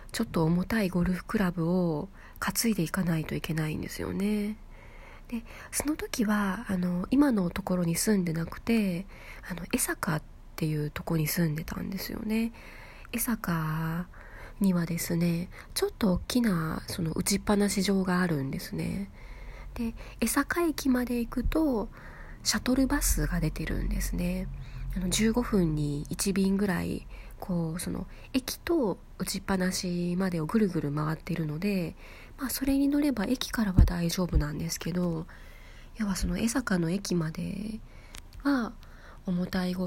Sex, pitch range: female, 165-220 Hz